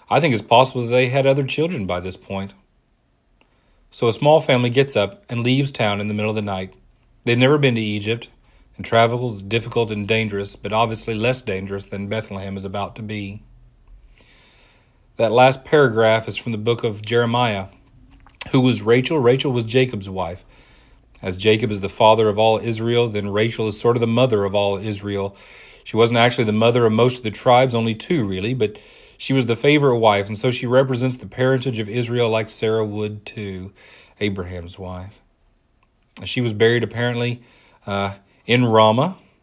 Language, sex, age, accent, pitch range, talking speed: English, male, 40-59, American, 100-120 Hz, 185 wpm